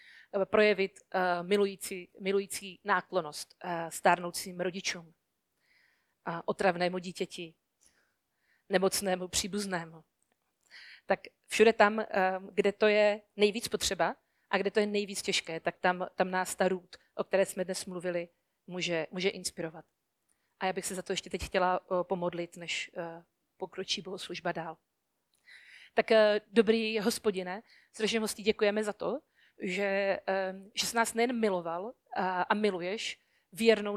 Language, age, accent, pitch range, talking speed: Czech, 40-59, native, 180-210 Hz, 120 wpm